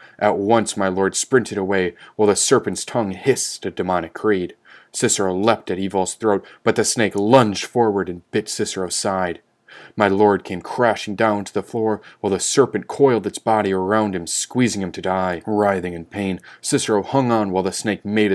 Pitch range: 95-110 Hz